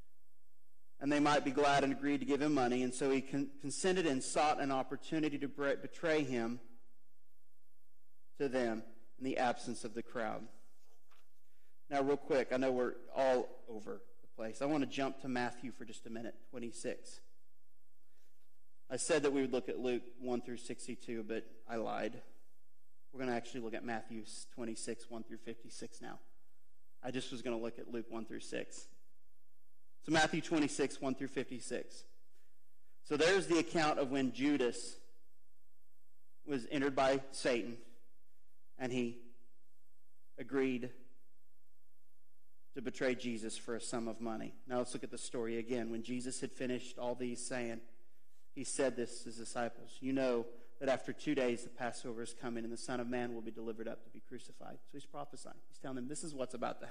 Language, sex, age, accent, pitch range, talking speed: English, male, 30-49, American, 115-135 Hz, 180 wpm